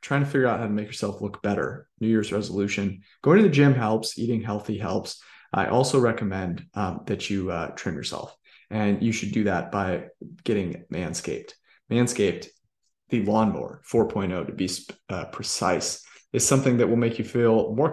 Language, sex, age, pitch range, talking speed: English, male, 30-49, 100-125 Hz, 180 wpm